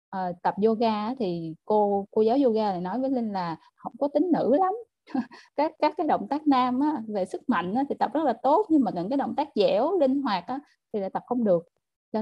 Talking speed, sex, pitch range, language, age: 245 wpm, female, 185-250 Hz, Vietnamese, 20-39